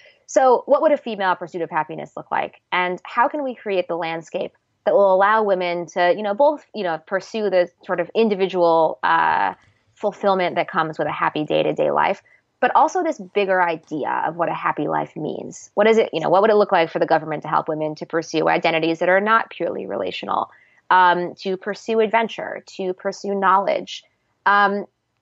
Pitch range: 165-205 Hz